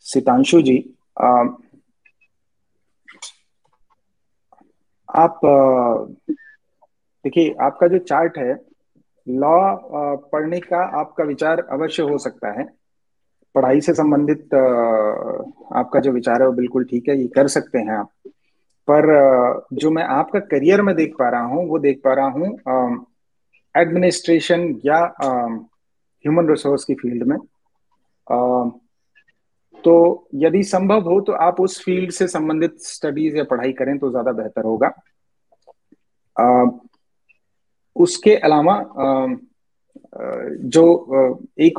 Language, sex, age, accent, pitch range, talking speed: Hindi, male, 30-49, native, 130-180 Hz, 120 wpm